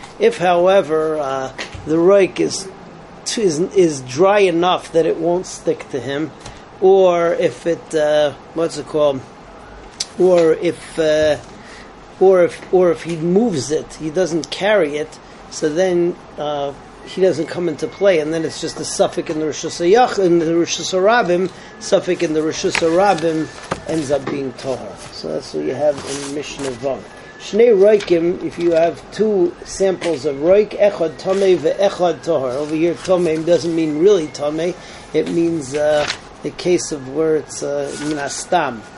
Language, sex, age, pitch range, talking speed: English, male, 30-49, 155-185 Hz, 160 wpm